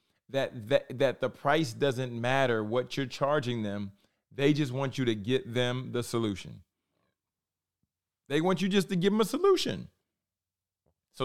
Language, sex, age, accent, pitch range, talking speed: English, male, 30-49, American, 115-145 Hz, 160 wpm